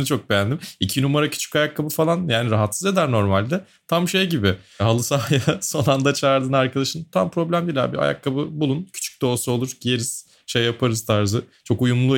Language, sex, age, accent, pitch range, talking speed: Turkish, male, 30-49, native, 105-145 Hz, 175 wpm